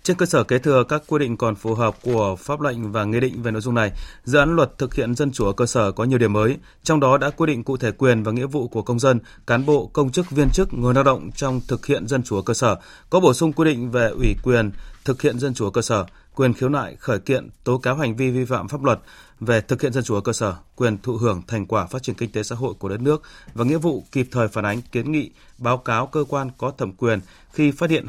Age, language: 30-49, Vietnamese